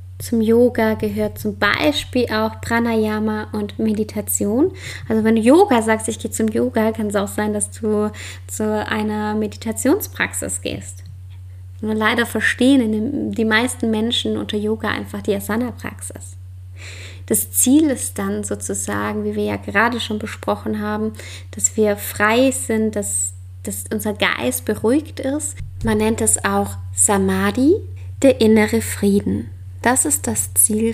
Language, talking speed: German, 140 wpm